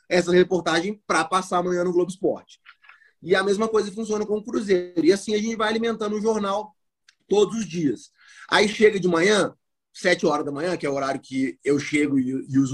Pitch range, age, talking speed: 165-205 Hz, 20-39, 205 wpm